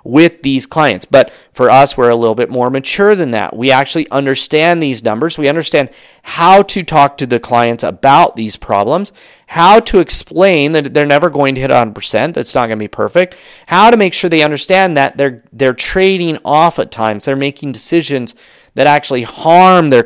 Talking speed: 200 wpm